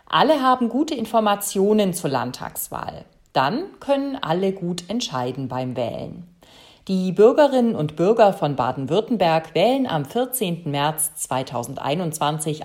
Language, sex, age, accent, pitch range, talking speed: German, female, 40-59, German, 150-215 Hz, 115 wpm